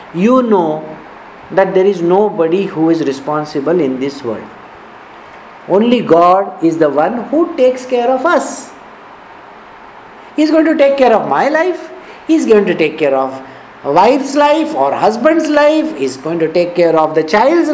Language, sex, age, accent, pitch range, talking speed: English, male, 50-69, Indian, 205-275 Hz, 175 wpm